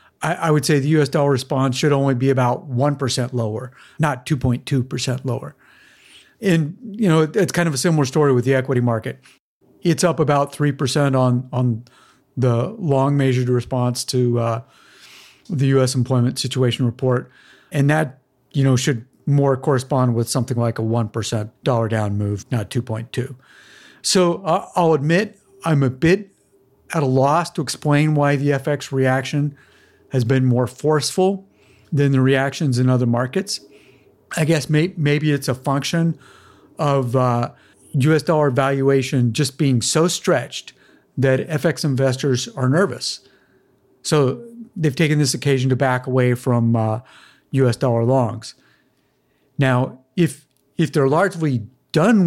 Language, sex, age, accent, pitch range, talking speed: English, male, 50-69, American, 125-155 Hz, 145 wpm